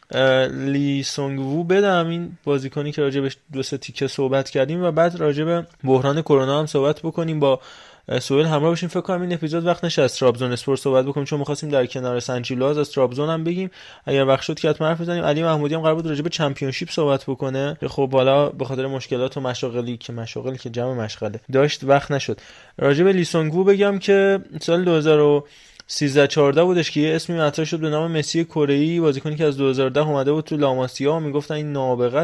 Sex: male